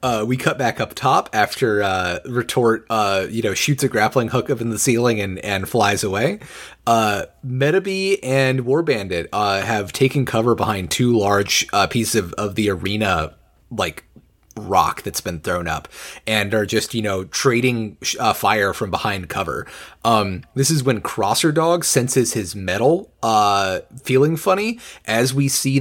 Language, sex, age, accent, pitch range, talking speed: English, male, 30-49, American, 100-135 Hz, 165 wpm